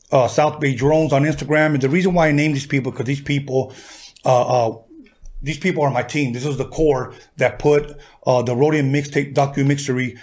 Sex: male